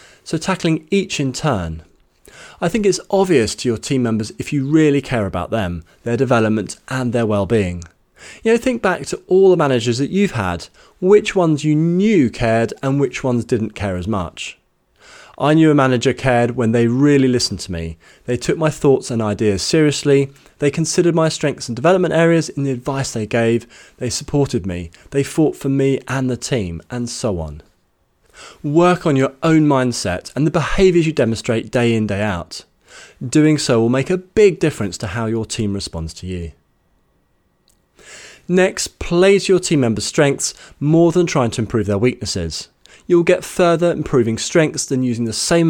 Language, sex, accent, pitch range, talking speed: English, male, British, 110-160 Hz, 185 wpm